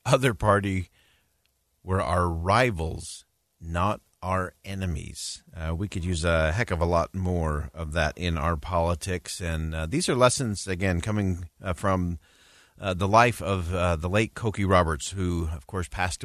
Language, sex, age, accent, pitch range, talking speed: English, male, 40-59, American, 85-100 Hz, 165 wpm